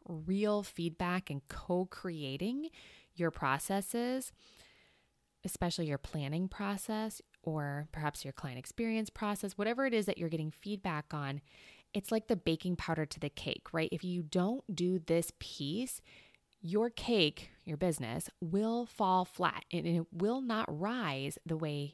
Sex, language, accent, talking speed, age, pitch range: female, English, American, 145 wpm, 20-39, 155-205 Hz